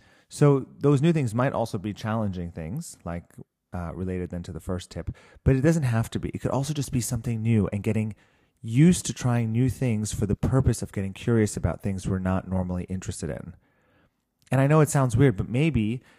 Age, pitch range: 30-49, 100-130 Hz